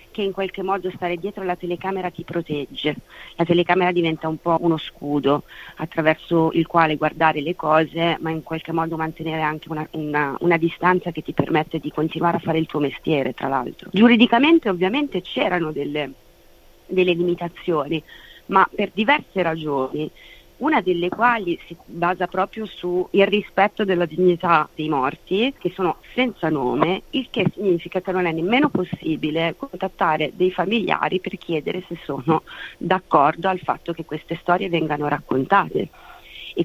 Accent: native